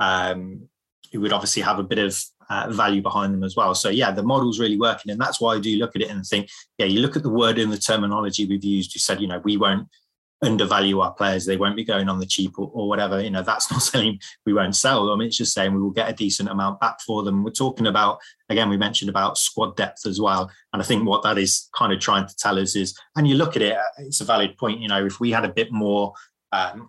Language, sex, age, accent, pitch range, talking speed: English, male, 20-39, British, 95-110 Hz, 275 wpm